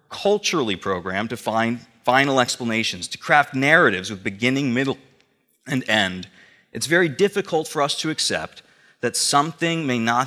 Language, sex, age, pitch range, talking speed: English, male, 30-49, 110-145 Hz, 145 wpm